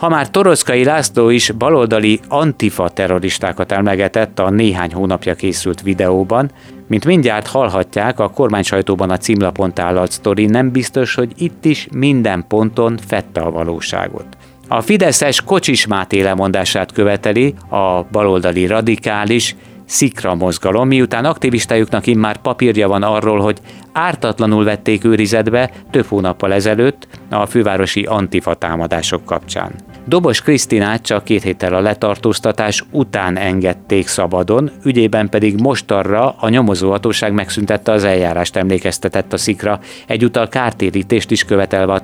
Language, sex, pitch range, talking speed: Hungarian, male, 95-115 Hz, 125 wpm